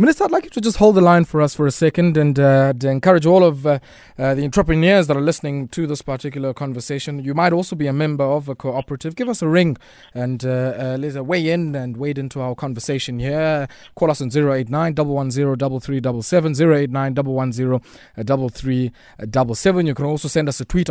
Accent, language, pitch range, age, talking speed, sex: South African, English, 130-160 Hz, 20-39, 200 wpm, male